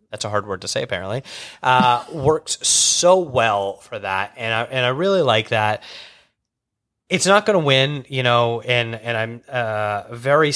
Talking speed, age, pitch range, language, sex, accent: 180 wpm, 30-49, 110-140 Hz, English, male, American